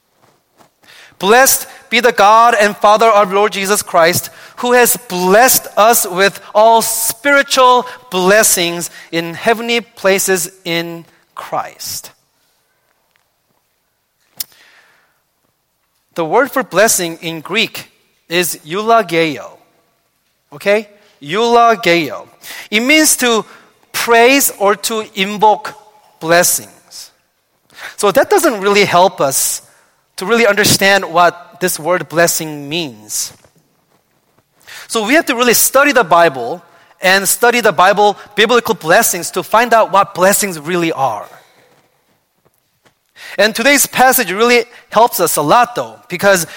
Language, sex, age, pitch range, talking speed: English, male, 30-49, 175-235 Hz, 110 wpm